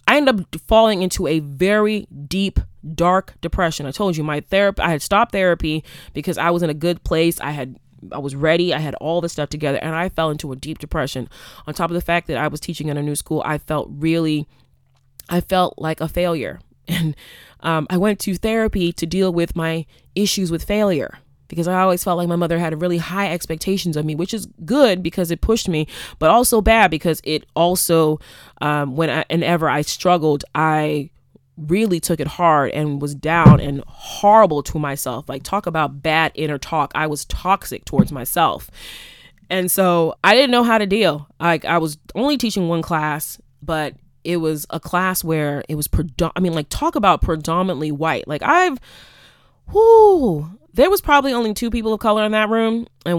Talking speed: 200 wpm